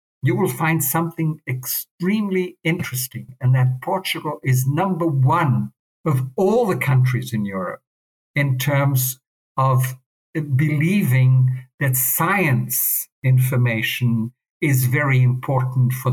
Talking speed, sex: 110 wpm, male